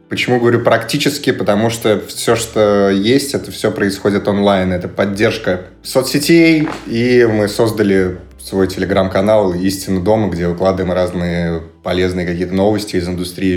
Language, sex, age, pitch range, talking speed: Russian, male, 20-39, 95-120 Hz, 140 wpm